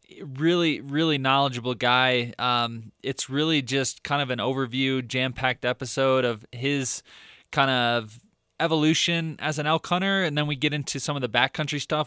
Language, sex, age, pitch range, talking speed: English, male, 20-39, 120-145 Hz, 165 wpm